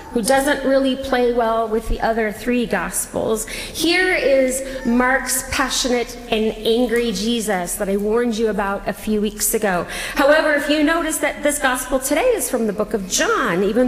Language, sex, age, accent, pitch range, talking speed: English, female, 30-49, American, 215-275 Hz, 175 wpm